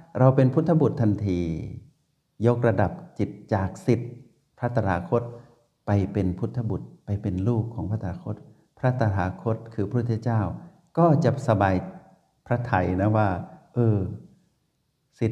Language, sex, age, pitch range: Thai, male, 60-79, 100-130 Hz